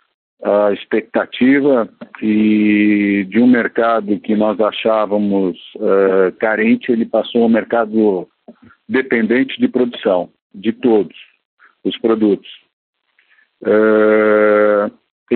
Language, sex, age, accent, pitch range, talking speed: Portuguese, male, 60-79, Brazilian, 105-120 Hz, 95 wpm